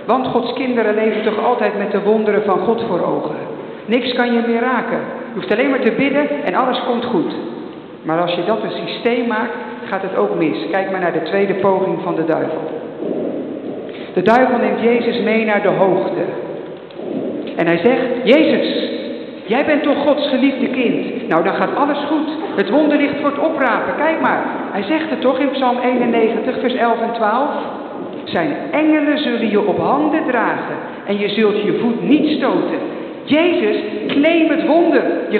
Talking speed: 180 wpm